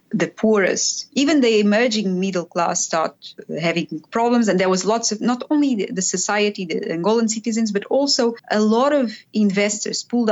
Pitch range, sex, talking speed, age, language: 175-225 Hz, female, 170 wpm, 30-49, English